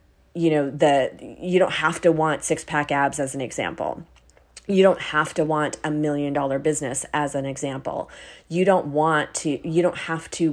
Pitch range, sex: 145-180 Hz, female